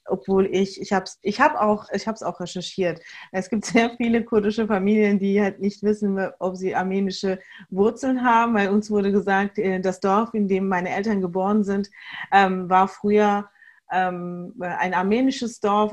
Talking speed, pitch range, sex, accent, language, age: 160 wpm, 180-210 Hz, female, German, German, 30-49